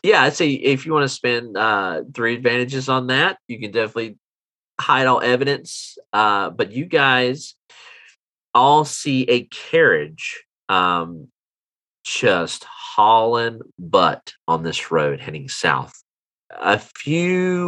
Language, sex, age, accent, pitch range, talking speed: English, male, 40-59, American, 110-145 Hz, 130 wpm